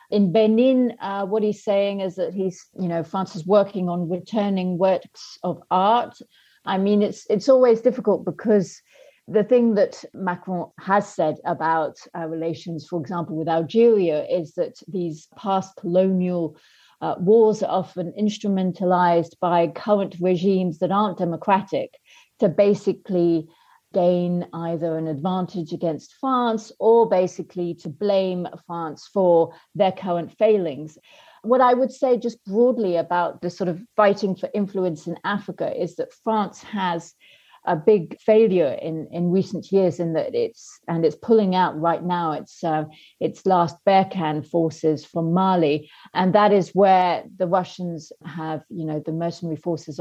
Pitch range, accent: 170-205 Hz, British